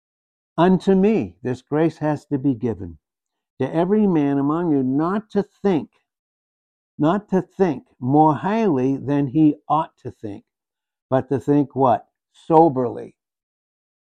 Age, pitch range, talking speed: 60-79, 125-160 Hz, 135 wpm